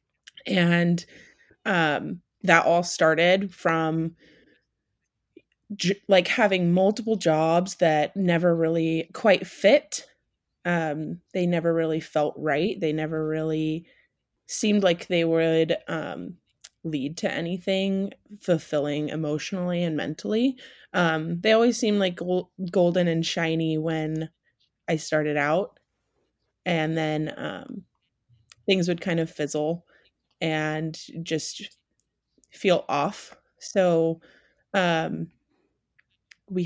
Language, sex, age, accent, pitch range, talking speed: English, female, 20-39, American, 155-180 Hz, 105 wpm